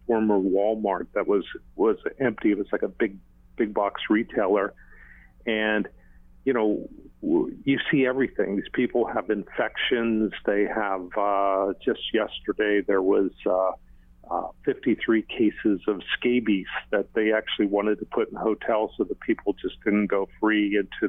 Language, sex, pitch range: English, male, 95-115 Hz